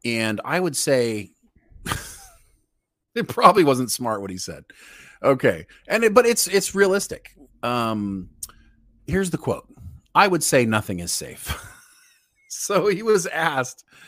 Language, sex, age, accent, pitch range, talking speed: English, male, 30-49, American, 105-140 Hz, 135 wpm